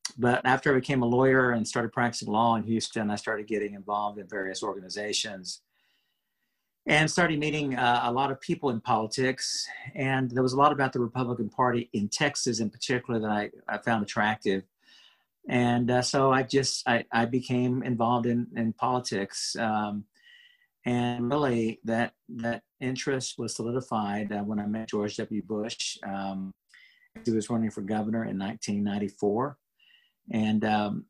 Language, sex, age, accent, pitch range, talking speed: English, male, 50-69, American, 105-125 Hz, 160 wpm